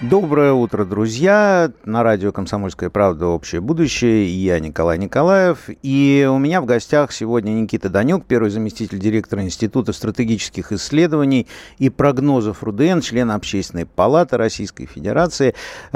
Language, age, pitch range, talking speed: Russian, 50-69, 105-150 Hz, 130 wpm